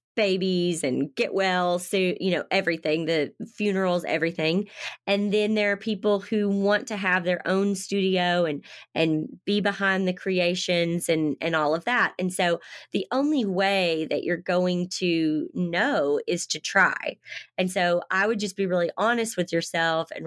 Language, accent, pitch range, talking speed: English, American, 160-200 Hz, 170 wpm